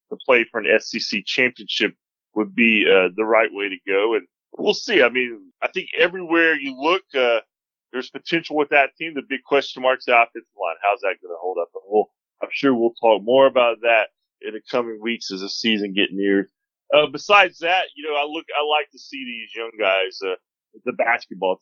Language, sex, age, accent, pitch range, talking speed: English, male, 30-49, American, 110-145 Hz, 220 wpm